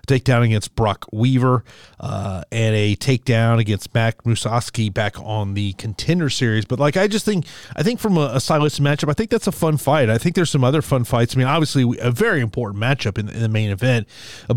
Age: 30-49